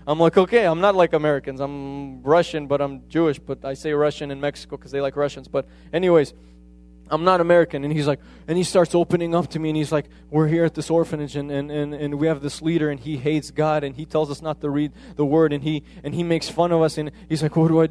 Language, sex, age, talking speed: English, male, 20-39, 270 wpm